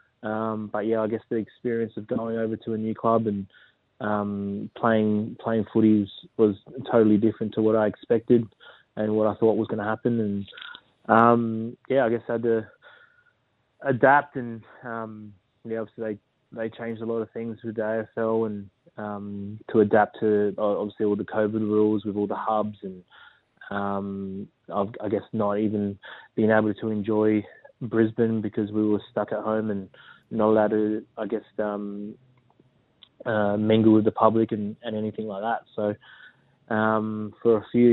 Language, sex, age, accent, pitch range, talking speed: English, male, 20-39, Australian, 105-115 Hz, 175 wpm